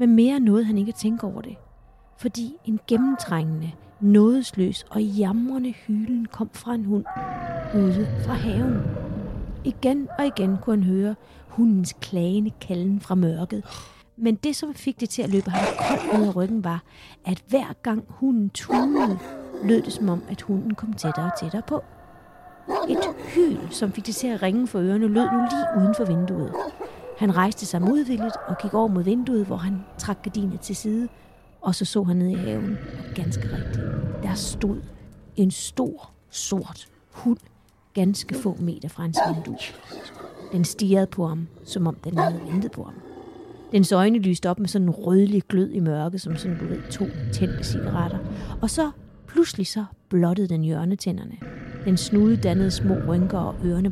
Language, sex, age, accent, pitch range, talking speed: Danish, female, 30-49, native, 180-225 Hz, 175 wpm